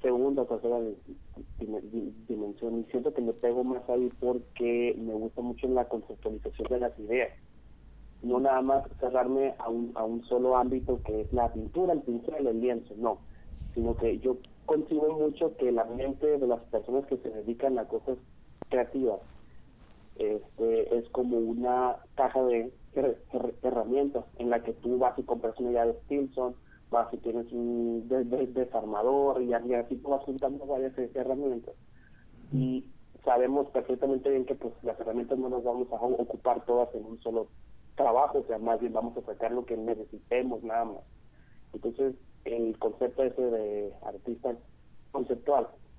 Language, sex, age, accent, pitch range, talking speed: Spanish, male, 40-59, Mexican, 115-130 Hz, 160 wpm